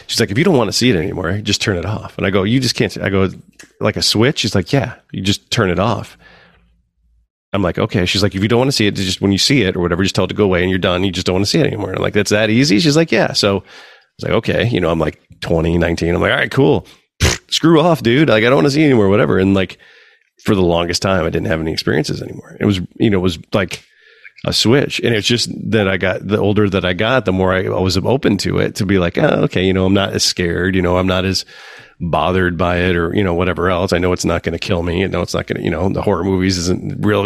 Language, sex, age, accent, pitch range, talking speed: English, male, 30-49, American, 90-105 Hz, 305 wpm